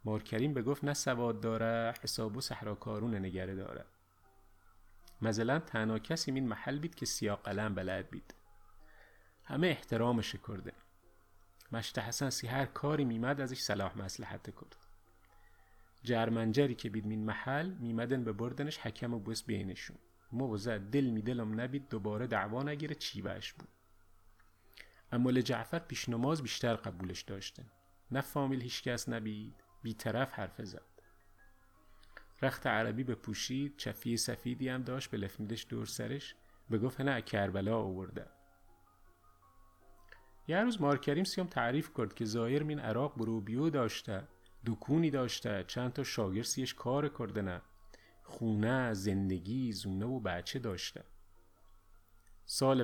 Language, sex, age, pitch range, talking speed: Persian, male, 30-49, 100-130 Hz, 125 wpm